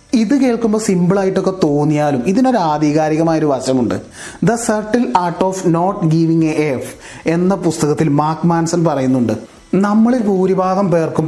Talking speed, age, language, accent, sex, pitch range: 130 wpm, 30-49, Malayalam, native, male, 150-195 Hz